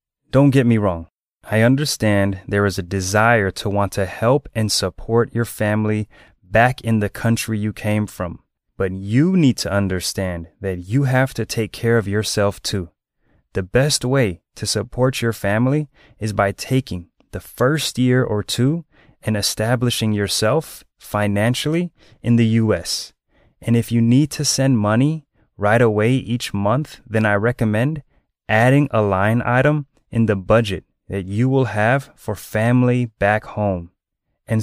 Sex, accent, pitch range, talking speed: male, American, 100-125 Hz, 160 wpm